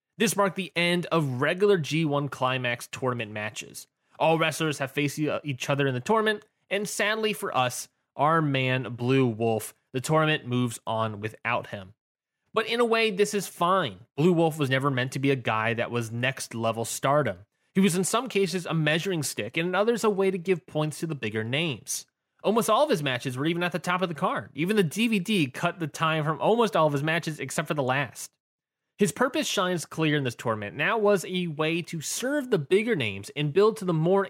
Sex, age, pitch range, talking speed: male, 20-39, 125-180 Hz, 215 wpm